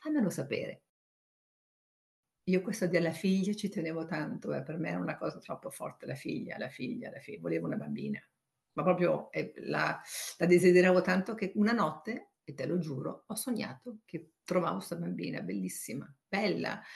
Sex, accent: female, native